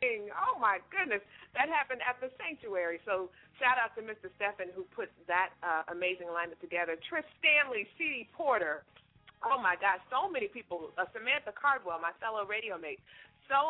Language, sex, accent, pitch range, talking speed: English, female, American, 175-255 Hz, 170 wpm